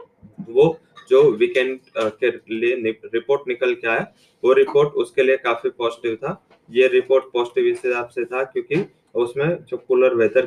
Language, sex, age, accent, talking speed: English, male, 30-49, Indian, 160 wpm